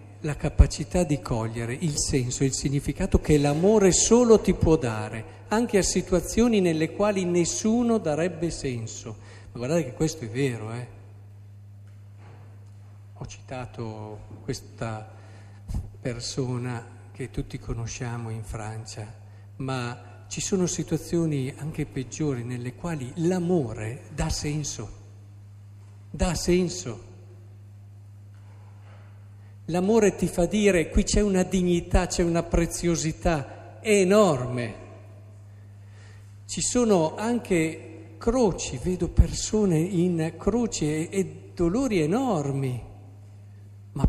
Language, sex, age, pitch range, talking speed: Italian, male, 50-69, 100-170 Hz, 105 wpm